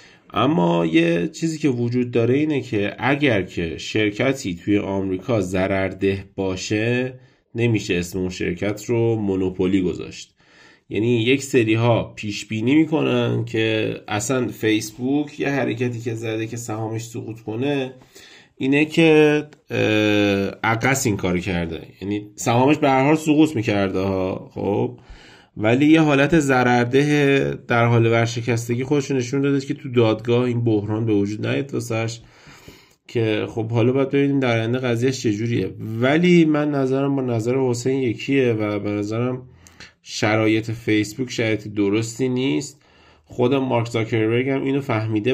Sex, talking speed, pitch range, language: male, 135 wpm, 105-130 Hz, Persian